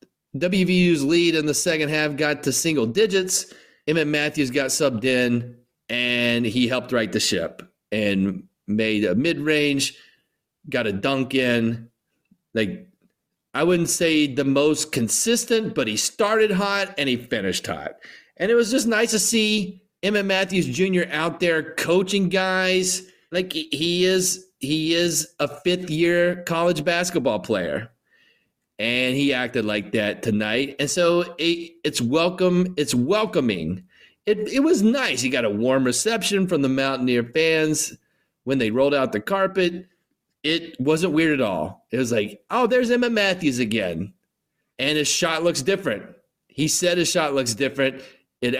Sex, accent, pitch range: male, American, 125-185 Hz